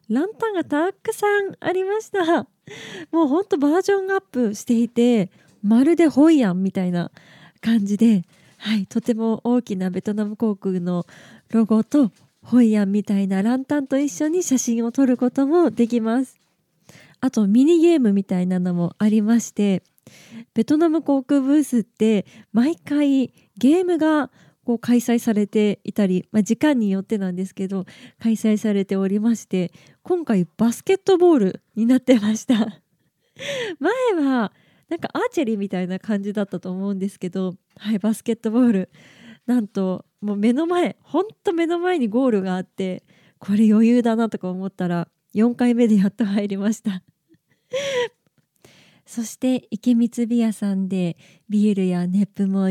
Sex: female